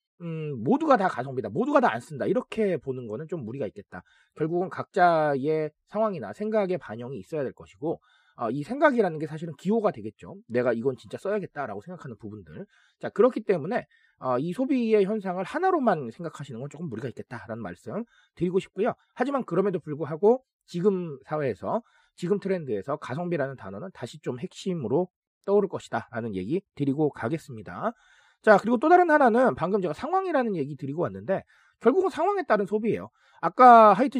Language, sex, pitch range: Korean, male, 145-235 Hz